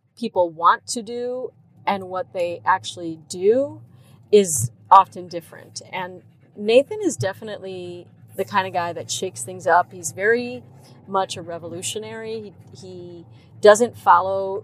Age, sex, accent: 30-49, female, American